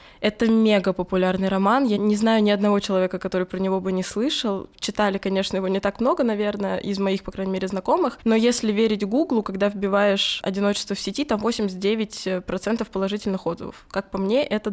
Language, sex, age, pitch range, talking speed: Russian, female, 20-39, 190-225 Hz, 185 wpm